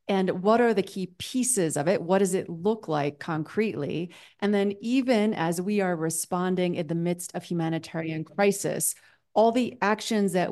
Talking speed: 175 wpm